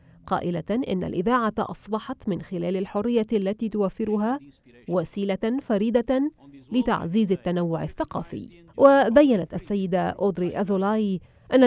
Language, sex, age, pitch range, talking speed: Arabic, female, 30-49, 185-230 Hz, 100 wpm